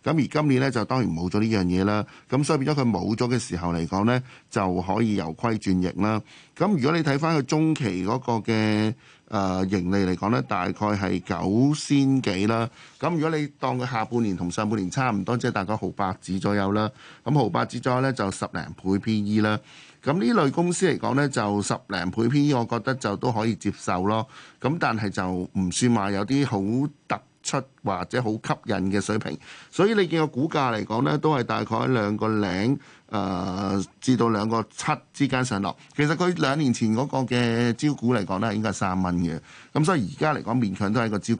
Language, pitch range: Chinese, 100-130 Hz